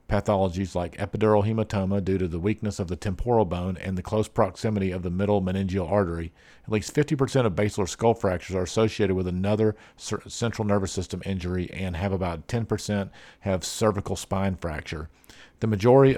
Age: 50-69